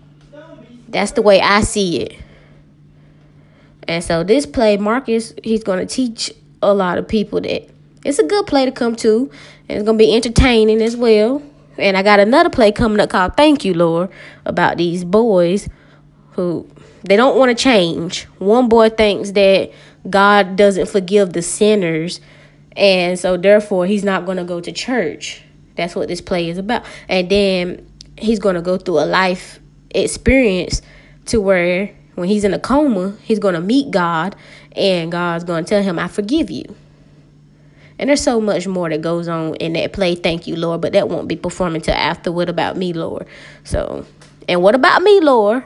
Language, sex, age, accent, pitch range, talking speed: English, female, 20-39, American, 175-220 Hz, 185 wpm